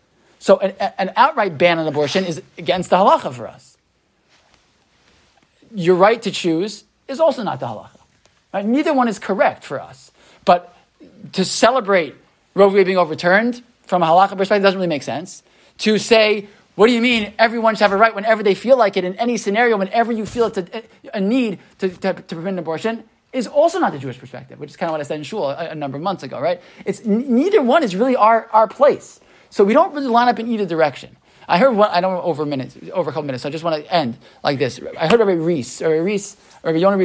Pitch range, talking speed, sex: 150-205 Hz, 230 wpm, male